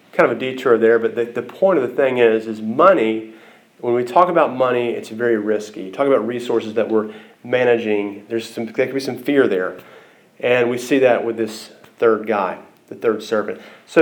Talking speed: 210 wpm